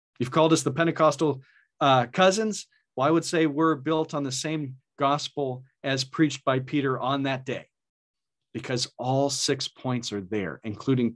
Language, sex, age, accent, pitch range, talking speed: English, male, 40-59, American, 120-155 Hz, 165 wpm